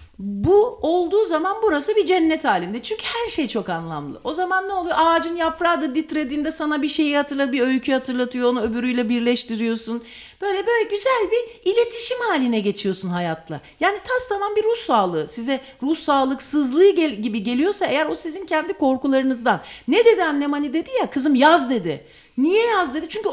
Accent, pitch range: Turkish, 235-365 Hz